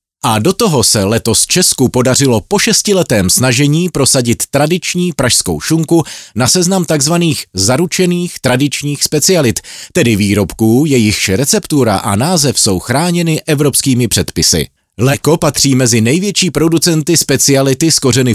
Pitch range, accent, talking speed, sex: 105-165 Hz, native, 120 wpm, male